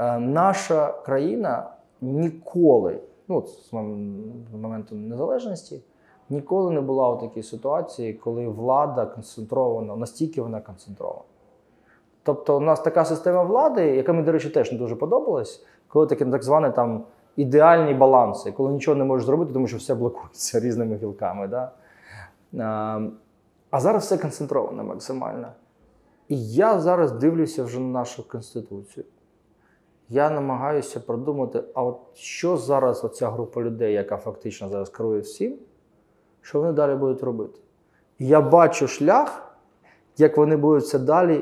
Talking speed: 135 wpm